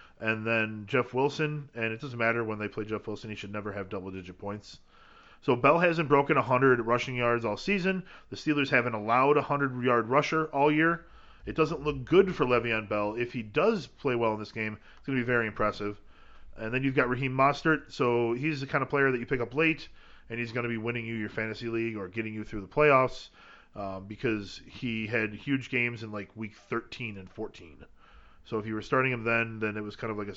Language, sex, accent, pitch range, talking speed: English, male, American, 105-135 Hz, 230 wpm